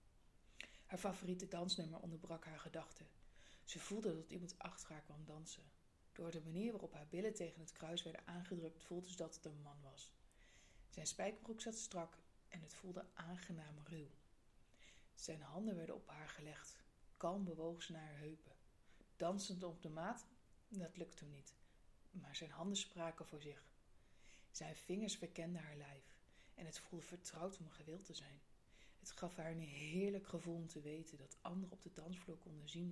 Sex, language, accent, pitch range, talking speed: female, Dutch, Dutch, 155-180 Hz, 175 wpm